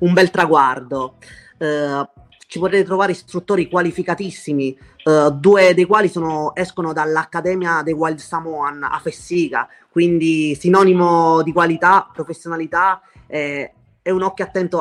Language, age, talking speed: Italian, 20-39, 125 wpm